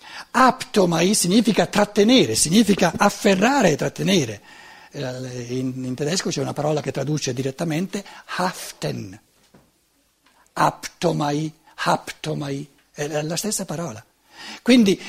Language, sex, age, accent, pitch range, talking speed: Italian, male, 60-79, native, 140-215 Hz, 90 wpm